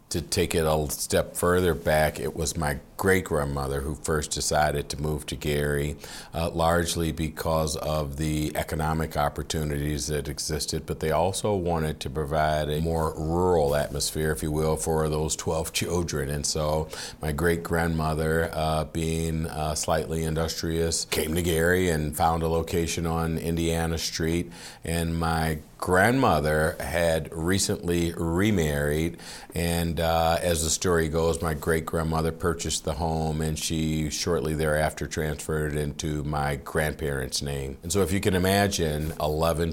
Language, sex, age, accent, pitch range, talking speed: English, male, 50-69, American, 75-85 Hz, 145 wpm